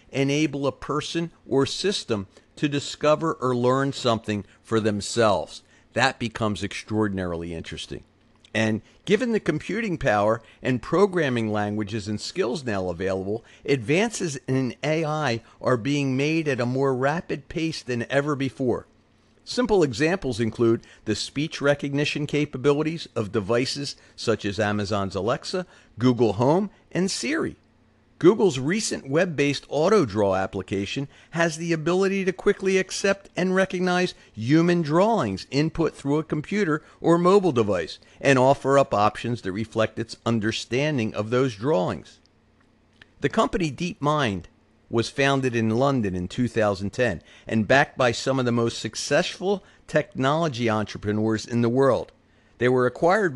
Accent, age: American, 50-69